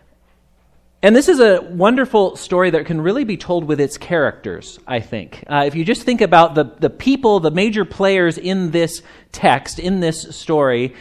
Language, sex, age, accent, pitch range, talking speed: English, male, 40-59, American, 125-185 Hz, 185 wpm